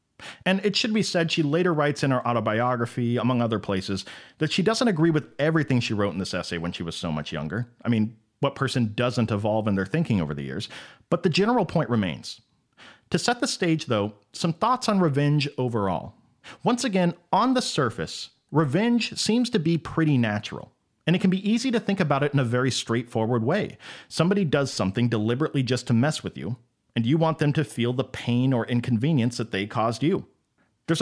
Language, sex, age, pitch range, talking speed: English, male, 40-59, 120-170 Hz, 205 wpm